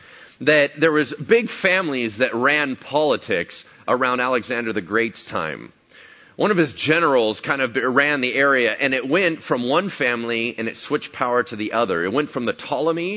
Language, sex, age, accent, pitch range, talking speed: English, male, 40-59, American, 120-180 Hz, 180 wpm